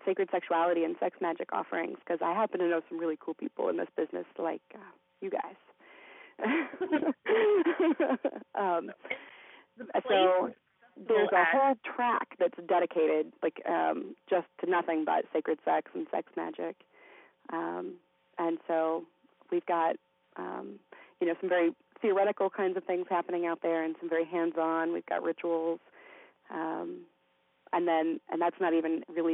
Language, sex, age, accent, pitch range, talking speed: English, female, 30-49, American, 165-205 Hz, 150 wpm